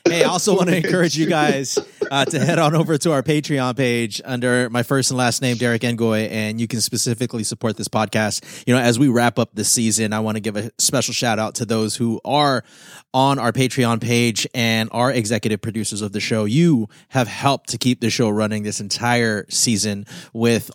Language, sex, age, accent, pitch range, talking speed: English, male, 20-39, American, 110-135 Hz, 215 wpm